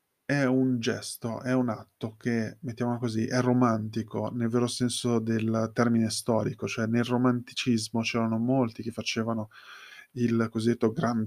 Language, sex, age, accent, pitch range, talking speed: Italian, male, 20-39, native, 110-130 Hz, 145 wpm